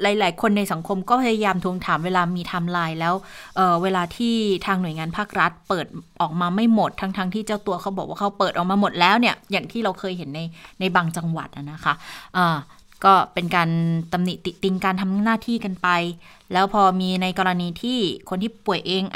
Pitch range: 170-205 Hz